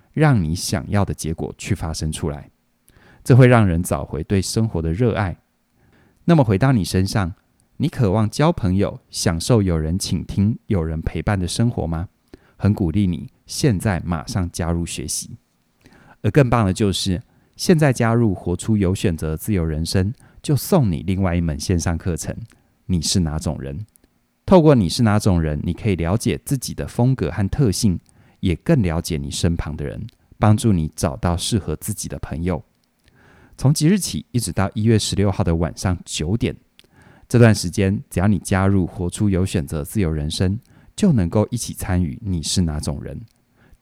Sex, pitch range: male, 85-115 Hz